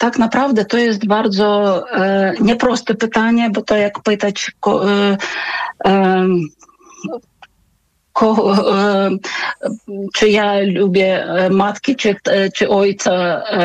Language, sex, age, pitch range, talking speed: Polish, female, 40-59, 185-215 Hz, 115 wpm